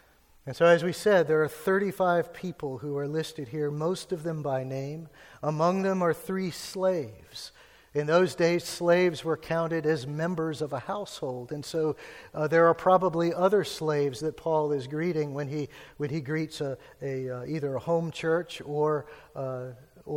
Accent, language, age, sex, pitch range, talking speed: American, English, 50-69, male, 145-170 Hz, 180 wpm